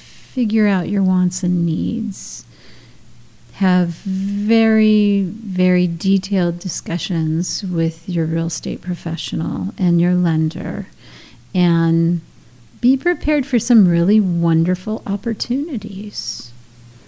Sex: female